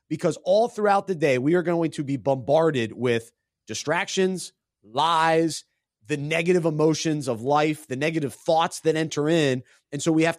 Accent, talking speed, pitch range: American, 170 wpm, 140-170 Hz